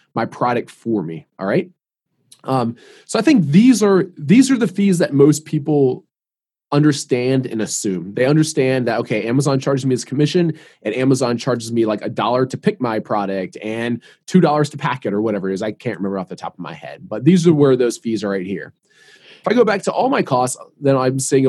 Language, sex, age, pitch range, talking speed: English, male, 20-39, 115-155 Hz, 225 wpm